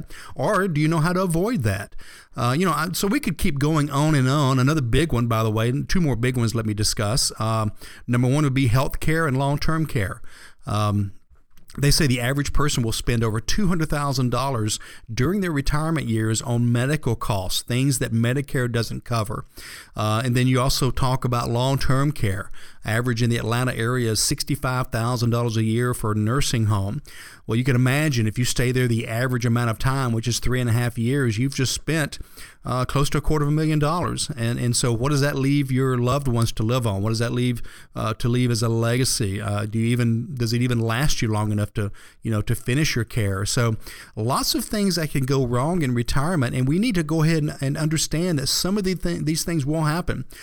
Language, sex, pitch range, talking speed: English, male, 115-145 Hz, 230 wpm